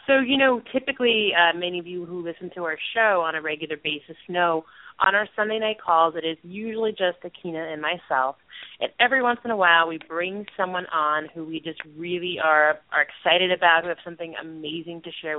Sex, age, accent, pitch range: female, 30-49, American, 155-195 Hz